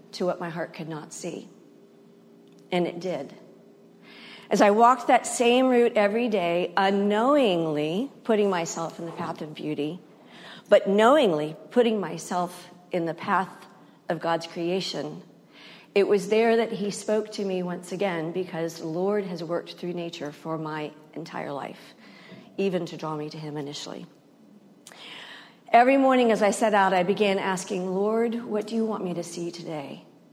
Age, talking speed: 50-69, 160 wpm